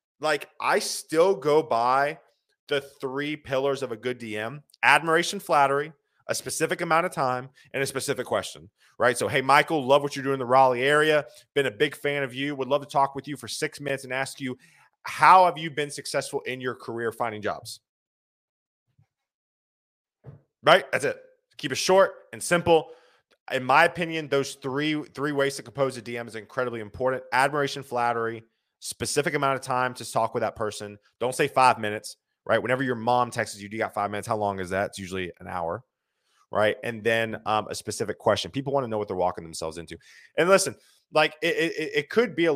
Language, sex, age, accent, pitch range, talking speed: English, male, 30-49, American, 115-150 Hz, 200 wpm